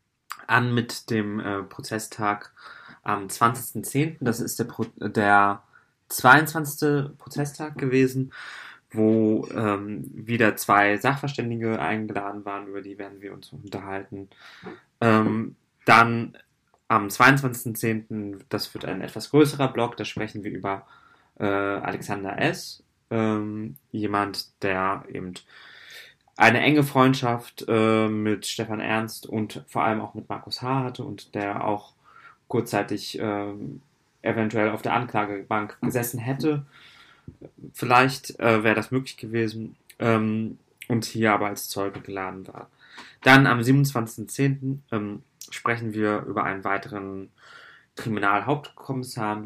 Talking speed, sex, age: 120 wpm, male, 20-39